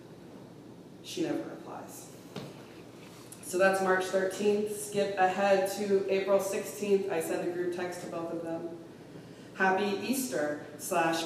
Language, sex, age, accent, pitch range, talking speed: English, female, 20-39, American, 155-205 Hz, 130 wpm